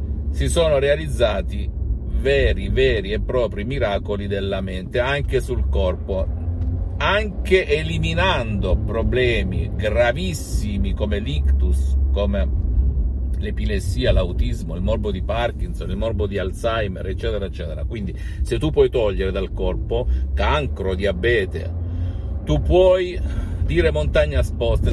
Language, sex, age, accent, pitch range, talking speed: Italian, male, 50-69, native, 75-100 Hz, 110 wpm